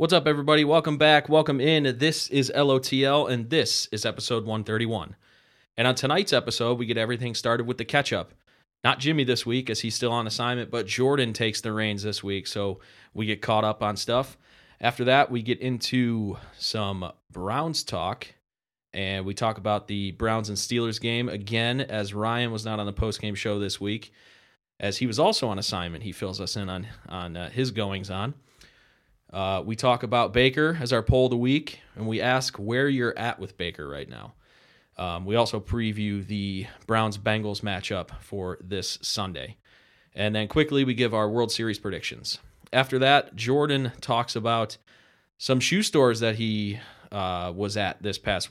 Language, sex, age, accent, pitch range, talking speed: English, male, 30-49, American, 105-125 Hz, 180 wpm